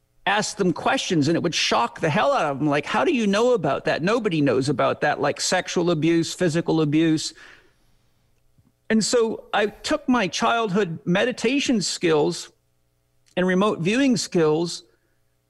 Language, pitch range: English, 155-205 Hz